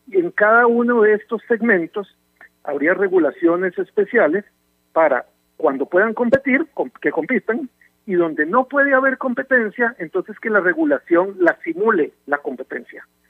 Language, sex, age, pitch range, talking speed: Spanish, male, 50-69, 165-225 Hz, 130 wpm